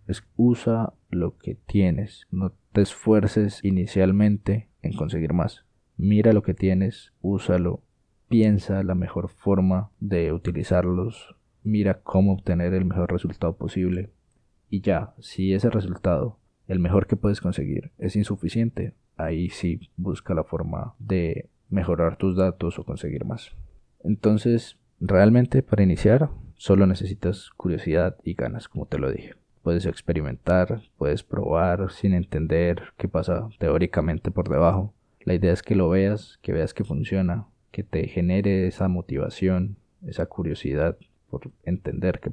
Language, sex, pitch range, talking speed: Spanish, male, 90-105 Hz, 135 wpm